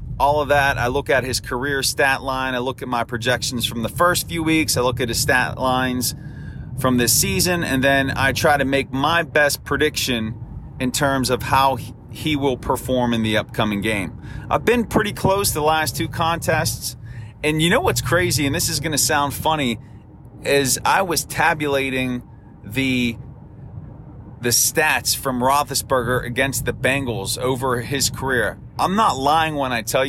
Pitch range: 120-150 Hz